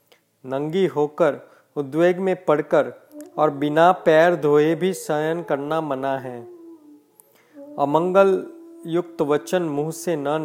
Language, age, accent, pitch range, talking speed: Hindi, 40-59, native, 145-195 Hz, 115 wpm